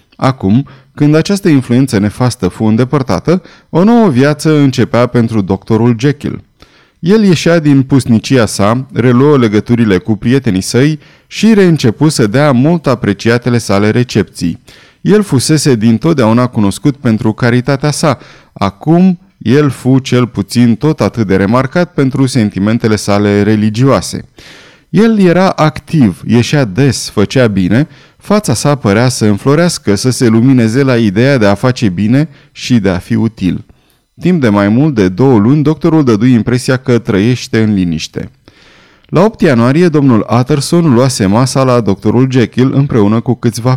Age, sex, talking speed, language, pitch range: 30-49, male, 145 wpm, Romanian, 110-145 Hz